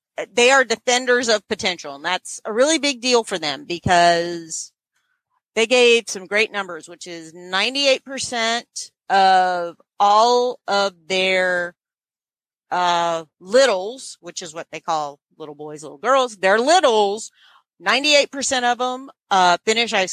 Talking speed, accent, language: 140 wpm, American, English